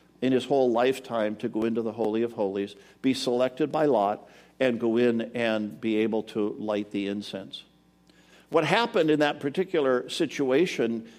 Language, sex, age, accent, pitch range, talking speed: English, male, 60-79, American, 125-160 Hz, 165 wpm